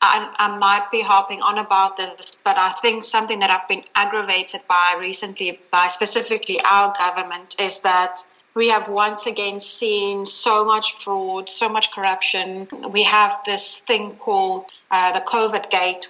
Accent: British